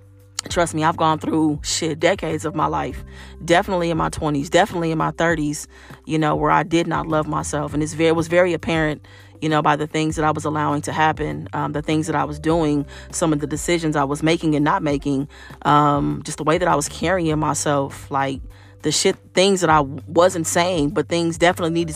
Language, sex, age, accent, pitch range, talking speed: English, female, 30-49, American, 145-170 Hz, 220 wpm